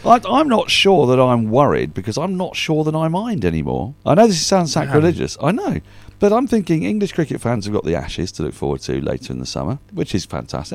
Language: English